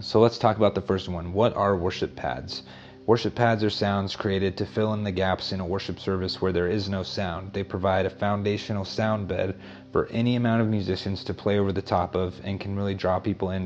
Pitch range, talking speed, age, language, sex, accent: 95-105 Hz, 235 wpm, 30-49, English, male, American